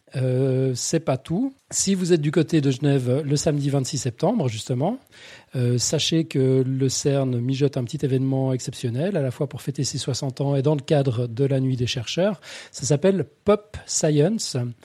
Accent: French